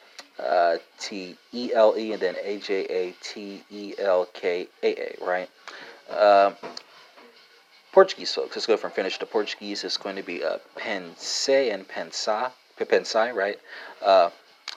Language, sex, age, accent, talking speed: English, male, 30-49, American, 140 wpm